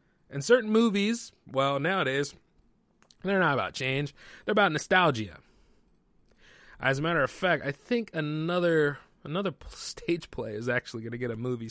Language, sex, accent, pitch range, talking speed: English, male, American, 145-240 Hz, 155 wpm